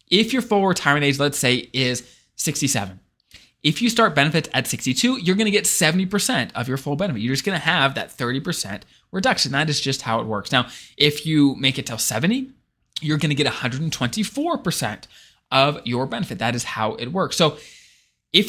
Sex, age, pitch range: male, 20-39, 125-180 Hz